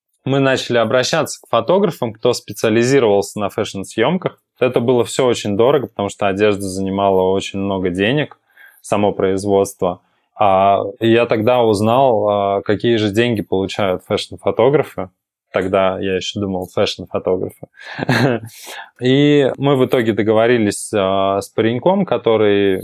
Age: 20-39